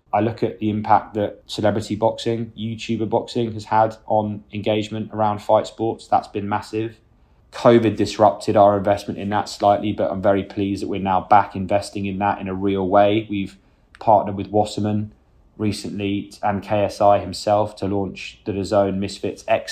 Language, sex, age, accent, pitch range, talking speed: English, male, 20-39, British, 100-115 Hz, 170 wpm